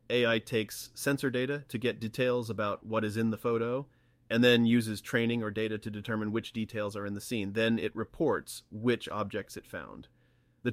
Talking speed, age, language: 195 wpm, 30-49, English